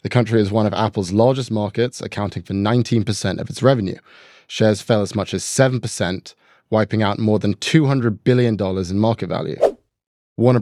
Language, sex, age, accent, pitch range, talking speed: English, male, 20-39, British, 100-125 Hz, 170 wpm